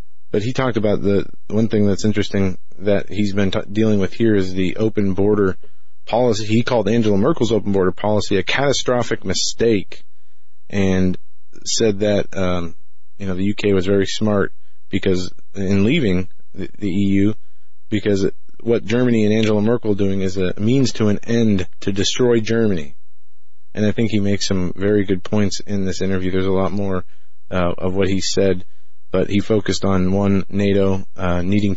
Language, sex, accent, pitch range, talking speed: English, male, American, 95-105 Hz, 180 wpm